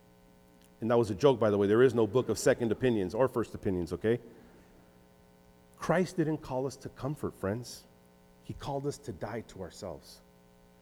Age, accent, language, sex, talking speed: 40-59, American, English, male, 185 wpm